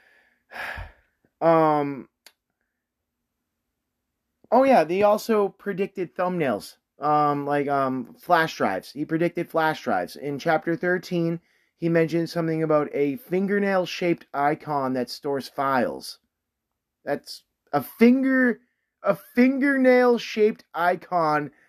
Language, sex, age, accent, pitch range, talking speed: English, male, 30-49, American, 155-205 Hz, 100 wpm